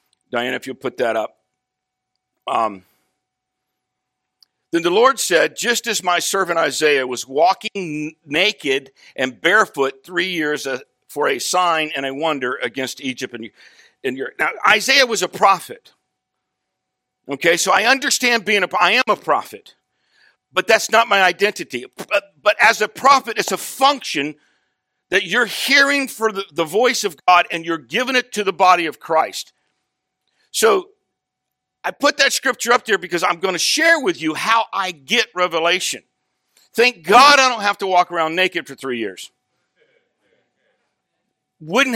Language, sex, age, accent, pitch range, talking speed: English, male, 50-69, American, 155-245 Hz, 160 wpm